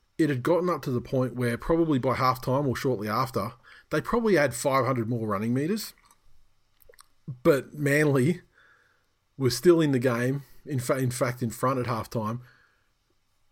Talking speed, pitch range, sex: 160 wpm, 115-135 Hz, male